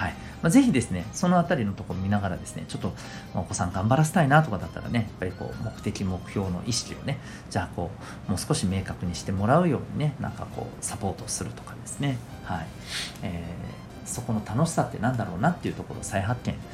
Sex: male